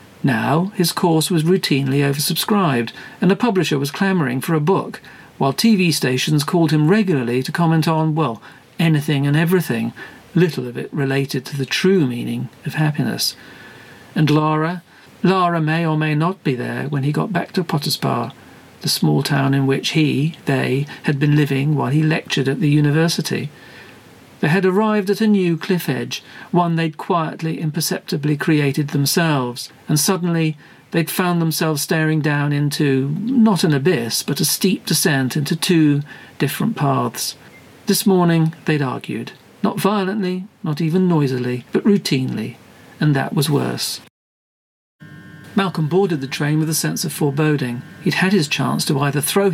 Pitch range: 140-180 Hz